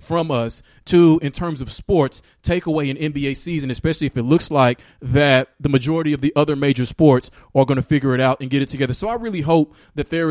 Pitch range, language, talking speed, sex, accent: 135-160 Hz, English, 240 wpm, male, American